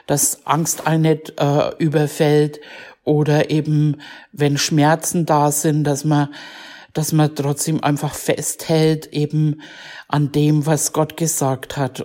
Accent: German